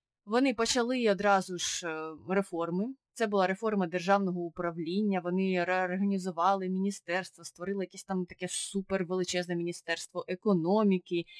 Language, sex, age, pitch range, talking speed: Ukrainian, female, 20-39, 165-200 Hz, 105 wpm